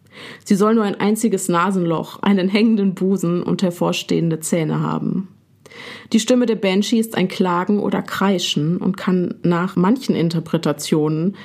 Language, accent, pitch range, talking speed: German, German, 165-200 Hz, 140 wpm